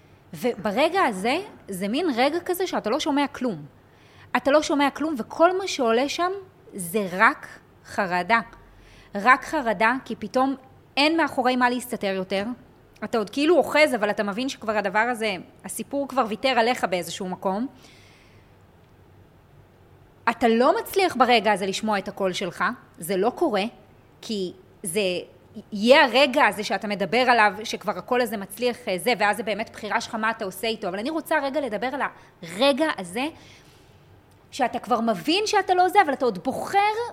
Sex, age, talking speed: female, 20-39, 160 wpm